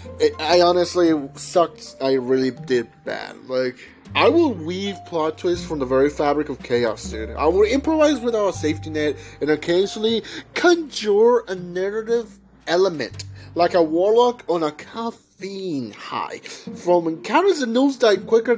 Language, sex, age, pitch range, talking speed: English, male, 30-49, 145-235 Hz, 145 wpm